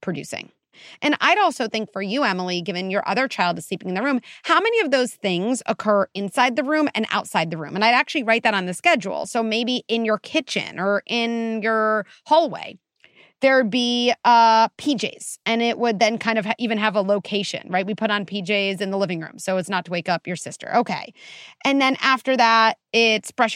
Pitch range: 200-270 Hz